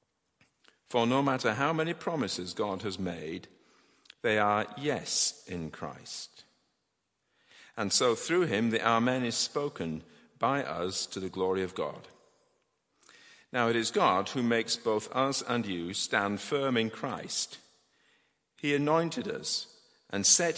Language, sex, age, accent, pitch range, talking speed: English, male, 50-69, British, 110-160 Hz, 140 wpm